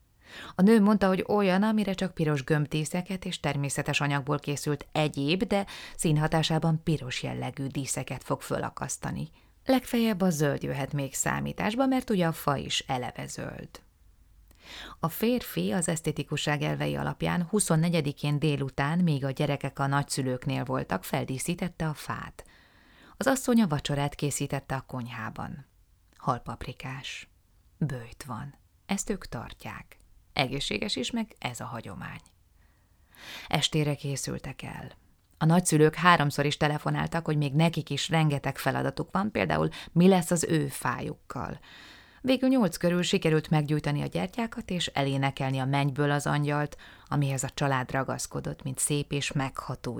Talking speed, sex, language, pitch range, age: 135 wpm, female, Hungarian, 135-170 Hz, 30-49